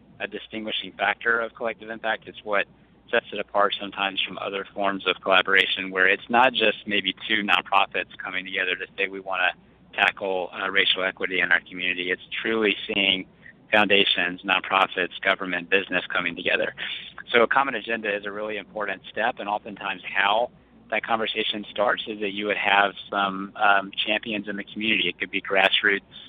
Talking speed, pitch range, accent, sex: 175 wpm, 95-105 Hz, American, male